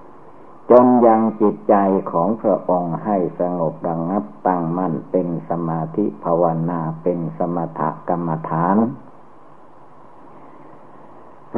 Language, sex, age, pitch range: Thai, male, 60-79, 90-105 Hz